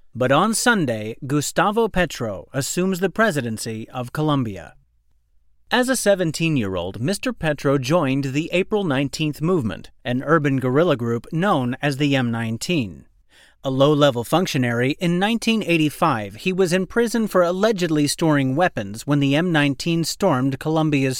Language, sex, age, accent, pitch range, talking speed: English, male, 30-49, American, 130-175 Hz, 130 wpm